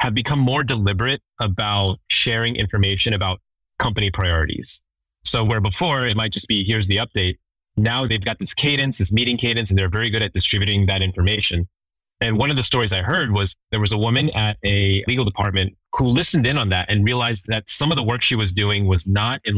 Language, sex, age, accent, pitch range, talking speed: English, male, 30-49, American, 95-120 Hz, 215 wpm